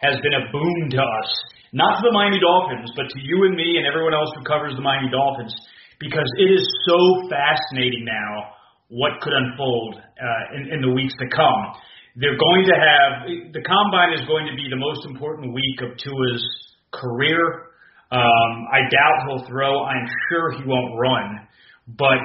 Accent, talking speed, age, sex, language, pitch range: American, 185 wpm, 30-49, male, English, 125-160 Hz